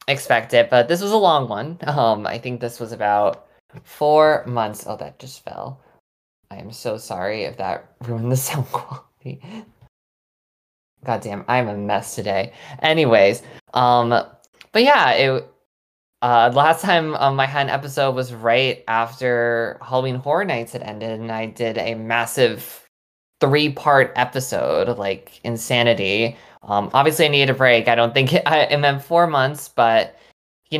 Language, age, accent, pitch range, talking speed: English, 20-39, American, 115-145 Hz, 160 wpm